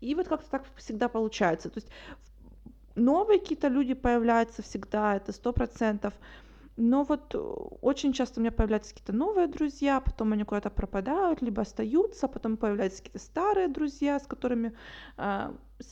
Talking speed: 145 wpm